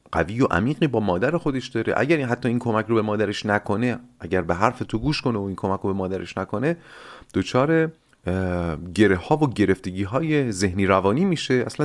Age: 30-49